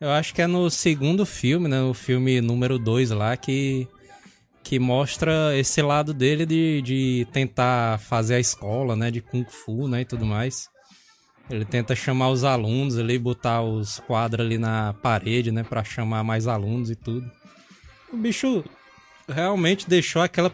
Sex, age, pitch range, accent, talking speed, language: male, 20-39, 125-185 Hz, Brazilian, 165 wpm, Portuguese